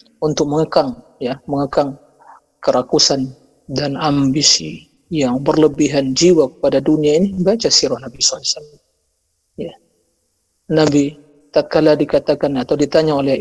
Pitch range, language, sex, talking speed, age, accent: 140-175 Hz, Indonesian, male, 105 wpm, 40-59, native